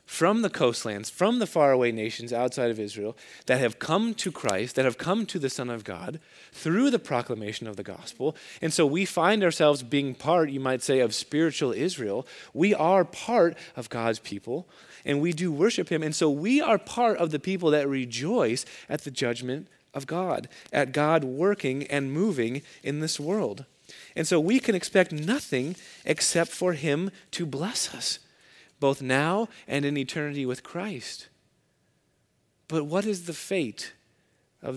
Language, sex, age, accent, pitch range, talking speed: English, male, 30-49, American, 120-170 Hz, 175 wpm